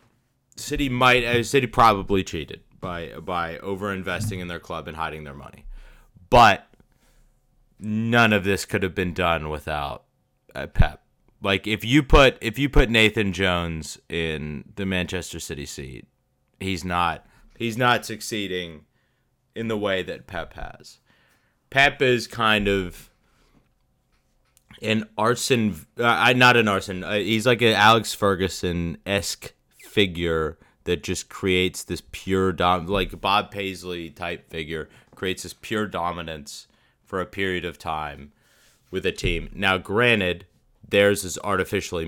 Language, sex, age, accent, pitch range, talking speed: English, male, 30-49, American, 85-110 Hz, 145 wpm